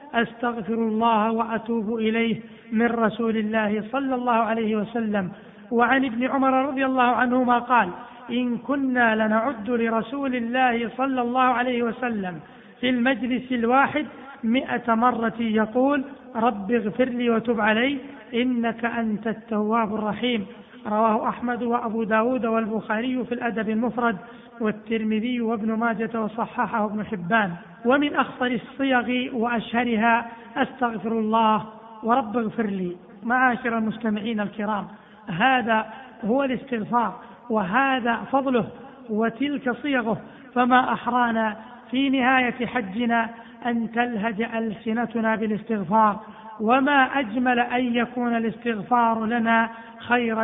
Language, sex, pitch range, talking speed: Arabic, male, 215-245 Hz, 110 wpm